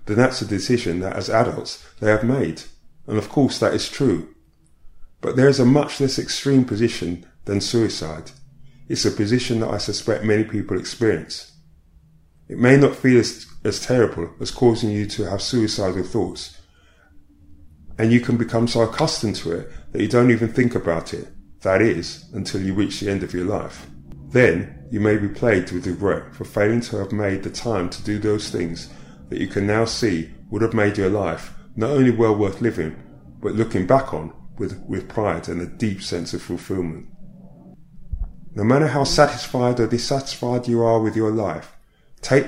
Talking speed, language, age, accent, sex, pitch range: 185 wpm, English, 30-49, British, male, 90-120 Hz